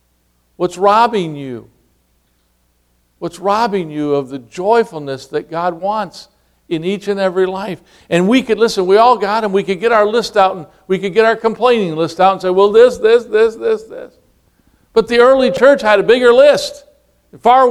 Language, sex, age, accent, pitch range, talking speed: English, male, 60-79, American, 155-230 Hz, 190 wpm